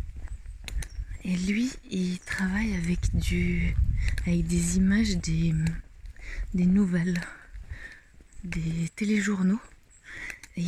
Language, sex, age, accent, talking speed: French, female, 30-49, French, 80 wpm